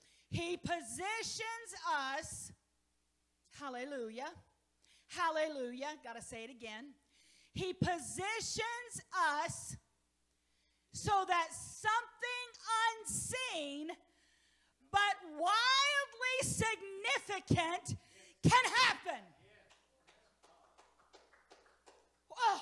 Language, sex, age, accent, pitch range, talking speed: English, female, 40-59, American, 255-335 Hz, 60 wpm